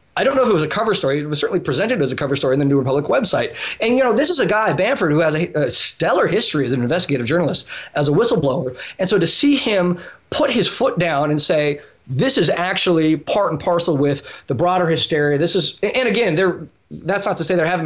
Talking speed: 250 wpm